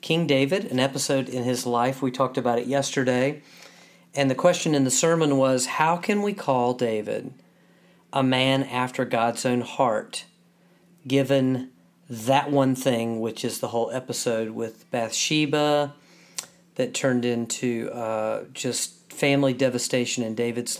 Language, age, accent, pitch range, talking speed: English, 40-59, American, 120-140 Hz, 145 wpm